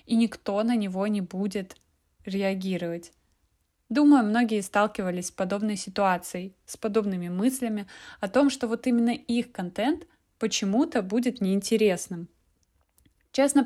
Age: 20-39